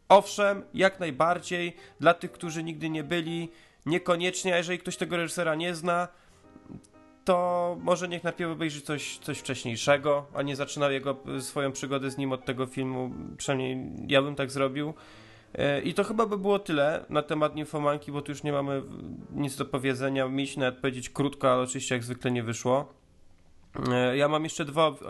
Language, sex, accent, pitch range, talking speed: Polish, male, native, 130-155 Hz, 170 wpm